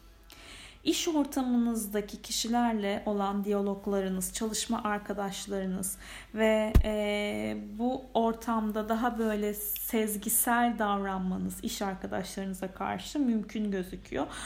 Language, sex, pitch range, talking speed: Turkish, female, 205-245 Hz, 85 wpm